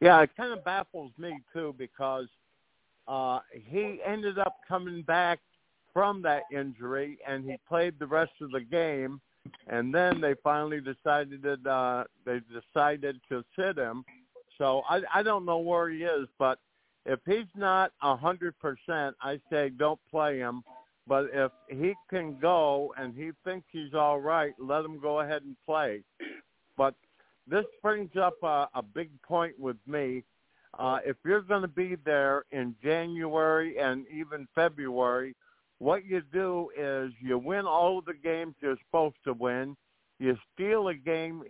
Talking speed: 155 wpm